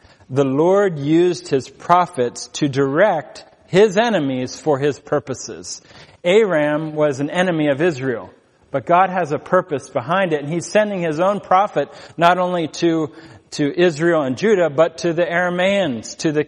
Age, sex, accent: 40-59, male, American